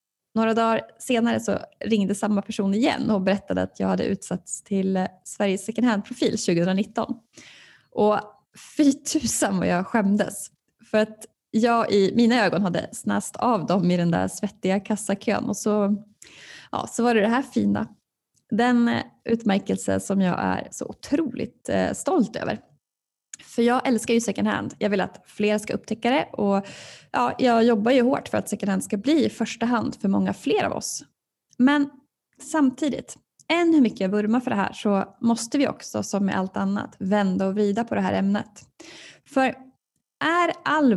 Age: 20-39